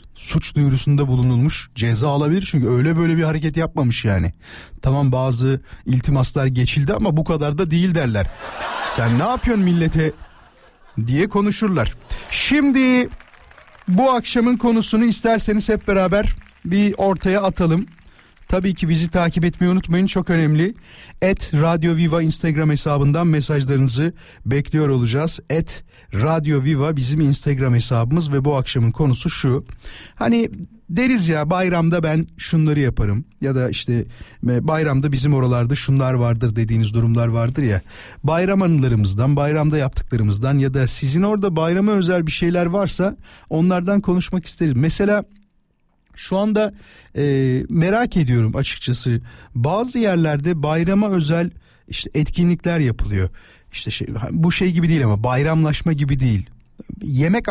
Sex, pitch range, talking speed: male, 130-180 Hz, 130 wpm